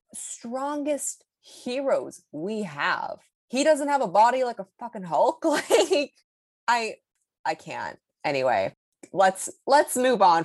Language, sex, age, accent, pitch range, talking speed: English, female, 20-39, American, 155-220 Hz, 125 wpm